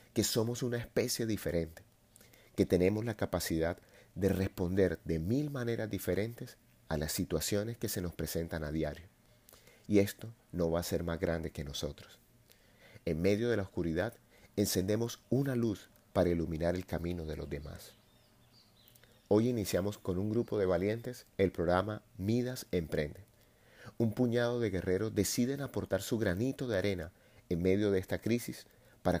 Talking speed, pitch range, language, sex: 155 wpm, 90-115 Hz, Spanish, male